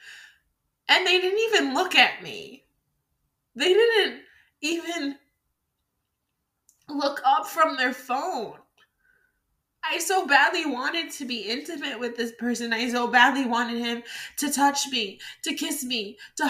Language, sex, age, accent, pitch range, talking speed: English, female, 20-39, American, 240-375 Hz, 135 wpm